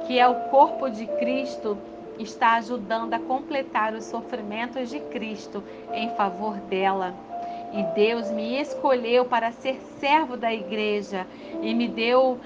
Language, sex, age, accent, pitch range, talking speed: Portuguese, female, 40-59, Brazilian, 215-275 Hz, 140 wpm